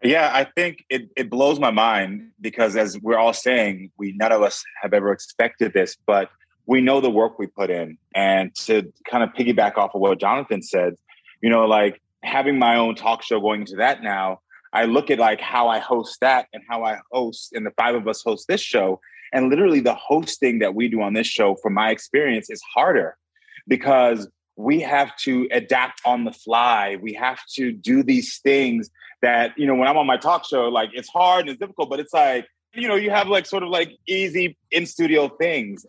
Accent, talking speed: American, 215 wpm